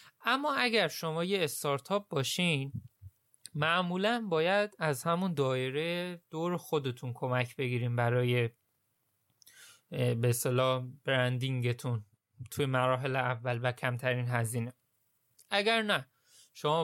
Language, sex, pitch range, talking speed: Persian, male, 130-180 Hz, 95 wpm